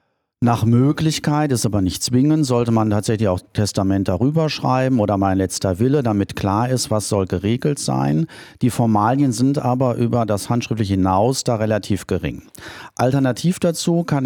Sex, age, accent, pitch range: male, 40-59, German, 110-140 Hz